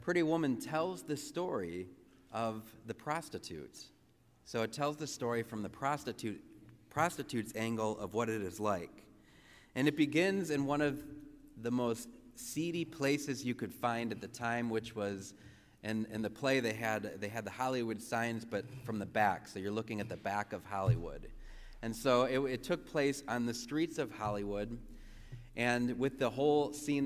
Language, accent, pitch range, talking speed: English, American, 110-135 Hz, 175 wpm